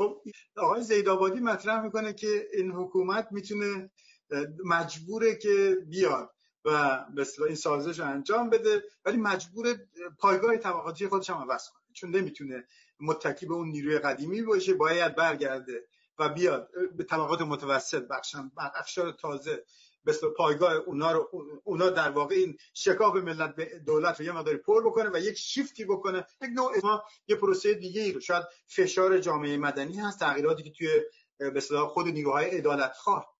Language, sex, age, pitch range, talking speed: Persian, male, 50-69, 150-225 Hz, 155 wpm